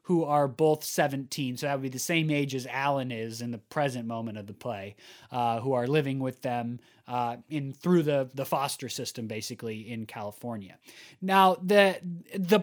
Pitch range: 135-180 Hz